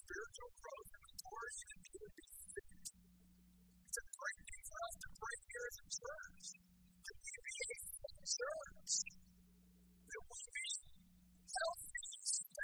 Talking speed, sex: 80 wpm, female